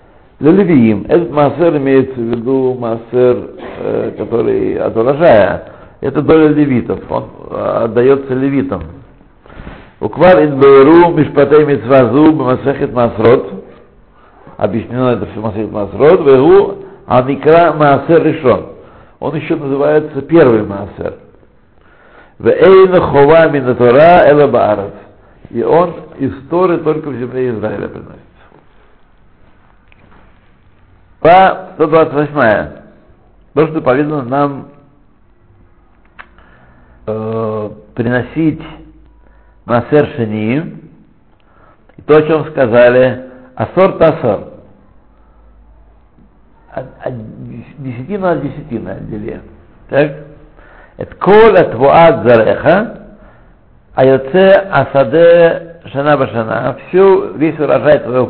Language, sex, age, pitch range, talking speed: Russian, male, 60-79, 120-155 Hz, 85 wpm